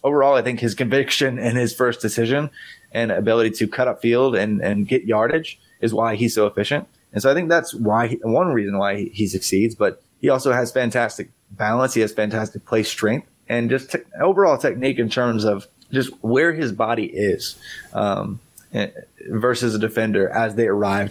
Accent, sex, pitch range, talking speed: American, male, 105-125 Hz, 185 wpm